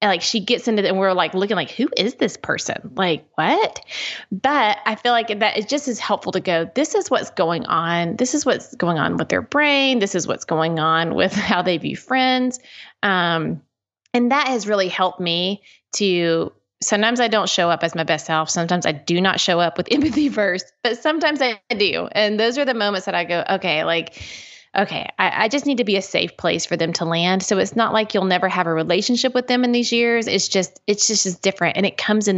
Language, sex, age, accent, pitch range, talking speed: English, female, 30-49, American, 170-225 Hz, 240 wpm